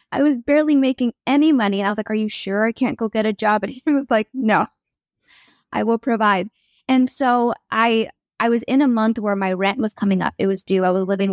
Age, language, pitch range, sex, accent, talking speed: 20-39, English, 200-245 Hz, female, American, 250 wpm